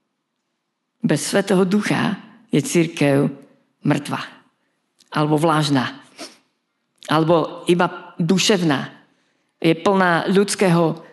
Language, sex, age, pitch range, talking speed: Slovak, female, 50-69, 145-175 Hz, 75 wpm